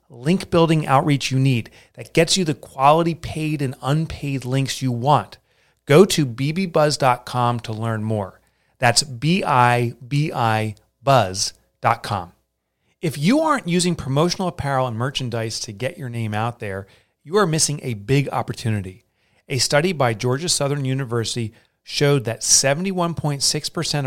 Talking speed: 130 wpm